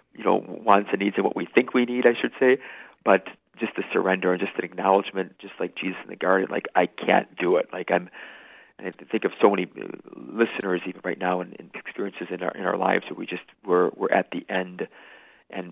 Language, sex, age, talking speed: English, male, 40-59, 240 wpm